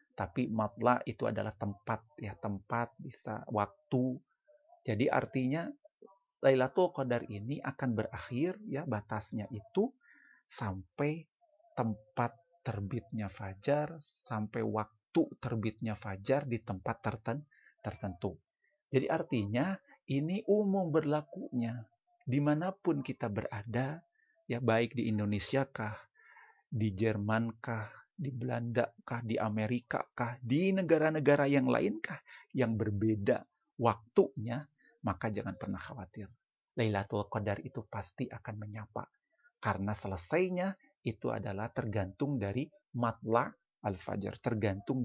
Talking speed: 105 wpm